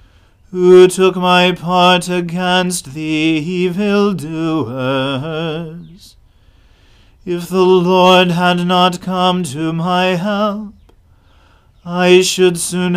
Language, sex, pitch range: English, male, 140-180 Hz